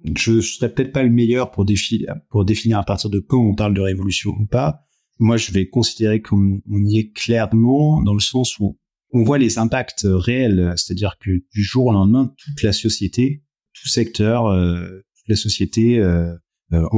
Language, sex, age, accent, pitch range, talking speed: French, male, 30-49, French, 100-125 Hz, 185 wpm